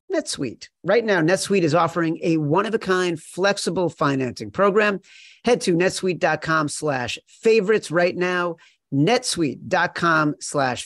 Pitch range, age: 125-170 Hz, 40-59